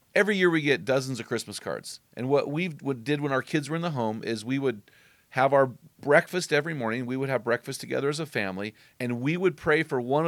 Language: English